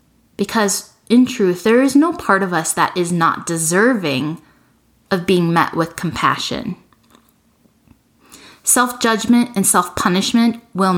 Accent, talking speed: American, 120 wpm